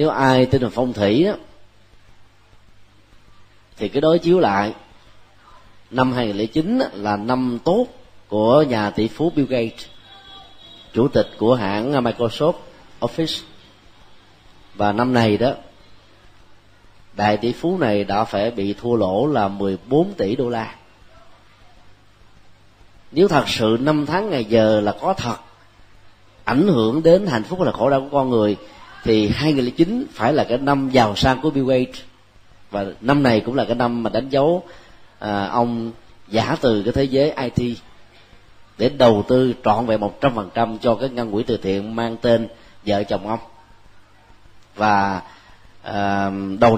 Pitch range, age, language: 100-125 Hz, 30-49, Vietnamese